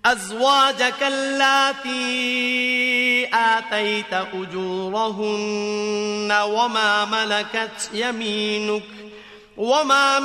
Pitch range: 210-240 Hz